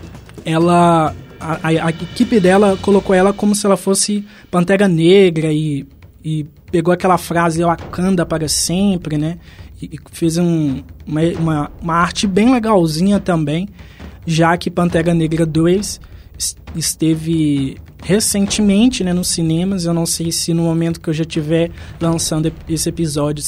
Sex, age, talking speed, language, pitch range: male, 20-39, 150 wpm, Portuguese, 160-200 Hz